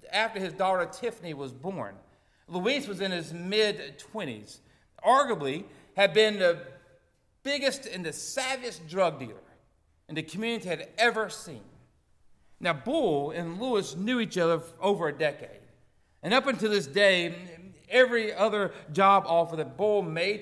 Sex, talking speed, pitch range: male, 145 wpm, 140-195 Hz